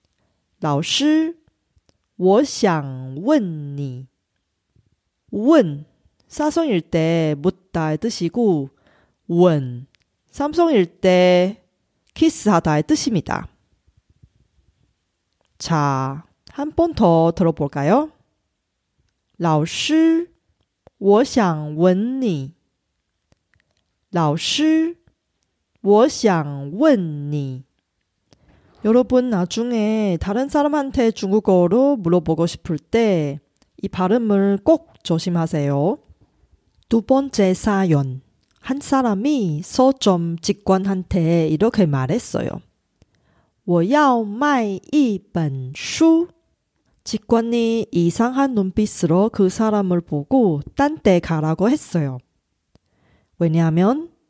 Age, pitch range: 40-59, 155-245 Hz